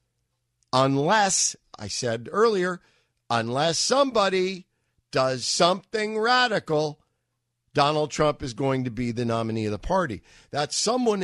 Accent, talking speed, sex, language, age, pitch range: American, 115 wpm, male, English, 50-69, 120-150 Hz